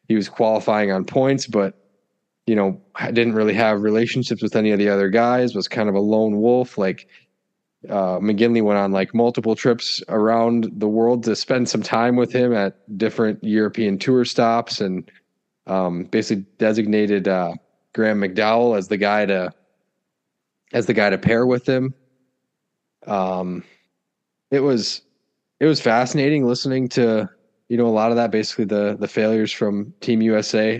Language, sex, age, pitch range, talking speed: English, male, 20-39, 105-120 Hz, 165 wpm